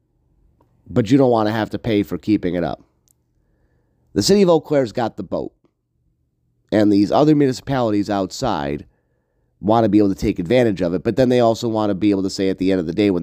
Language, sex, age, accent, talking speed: English, male, 30-49, American, 230 wpm